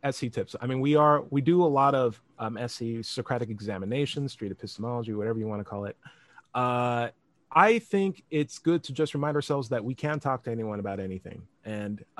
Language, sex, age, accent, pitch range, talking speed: English, male, 30-49, American, 115-150 Hz, 200 wpm